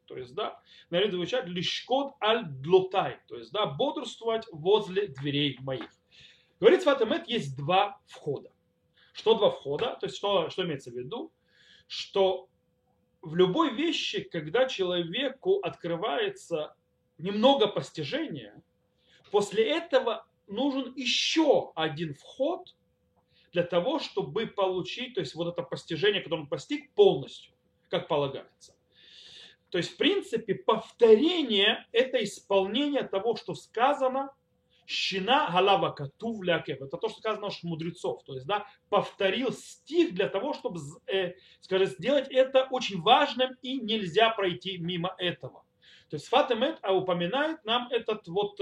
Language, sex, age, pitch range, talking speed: Russian, male, 30-49, 175-260 Hz, 135 wpm